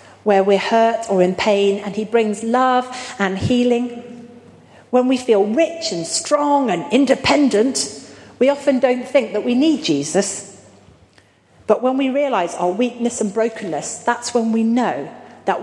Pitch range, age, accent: 195-265 Hz, 40-59, British